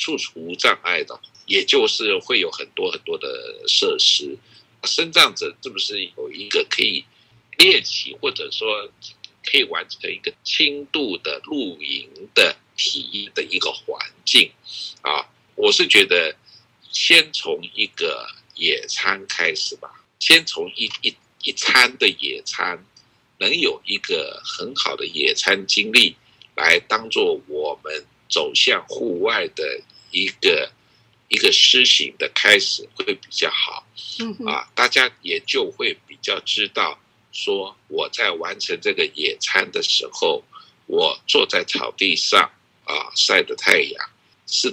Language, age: Chinese, 50-69